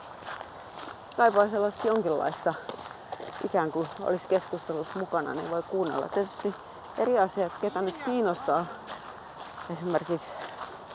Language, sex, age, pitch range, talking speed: Finnish, female, 30-49, 175-205 Hz, 100 wpm